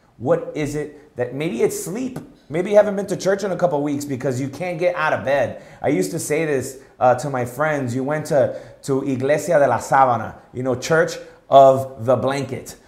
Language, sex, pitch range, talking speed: English, male, 110-140 Hz, 225 wpm